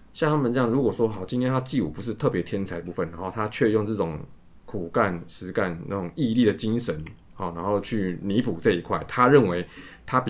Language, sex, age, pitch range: Chinese, male, 20-39, 95-120 Hz